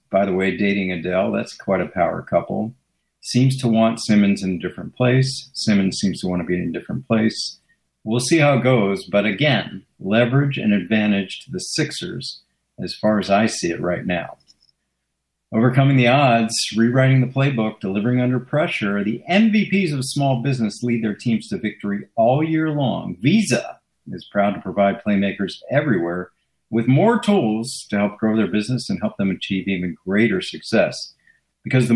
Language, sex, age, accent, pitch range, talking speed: English, male, 50-69, American, 100-130 Hz, 180 wpm